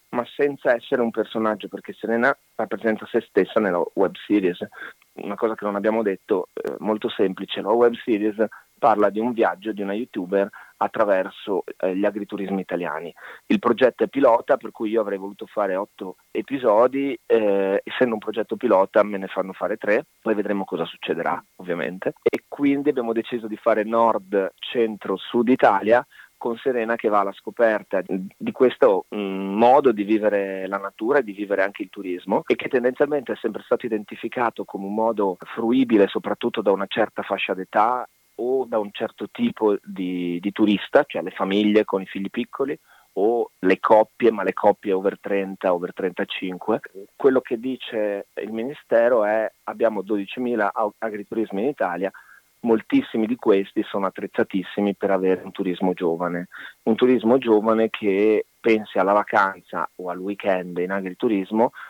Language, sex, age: Italian, male, 30-49